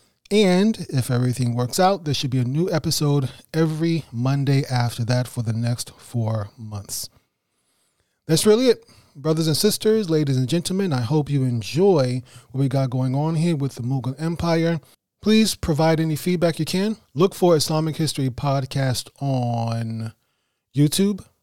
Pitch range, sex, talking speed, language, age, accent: 120-155 Hz, male, 155 wpm, English, 30-49, American